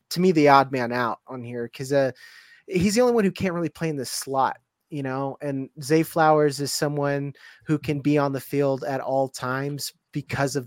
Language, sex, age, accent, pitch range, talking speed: English, male, 30-49, American, 135-165 Hz, 220 wpm